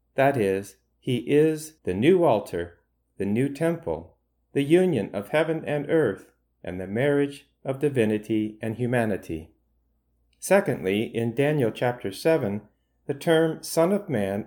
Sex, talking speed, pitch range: male, 135 wpm, 100-155 Hz